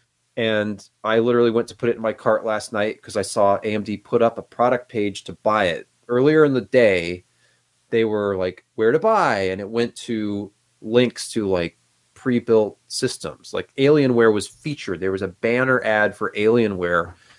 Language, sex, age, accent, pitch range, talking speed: English, male, 30-49, American, 95-120 Hz, 185 wpm